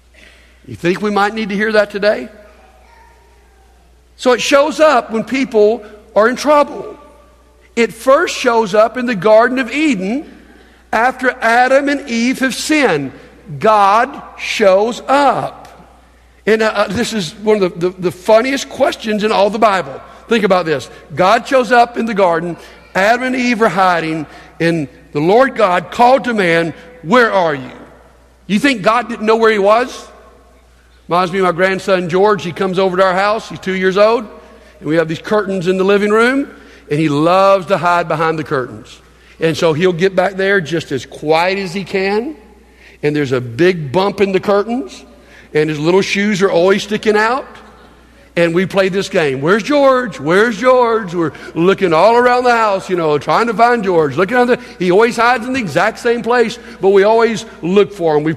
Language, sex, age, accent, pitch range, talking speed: English, male, 60-79, American, 180-235 Hz, 190 wpm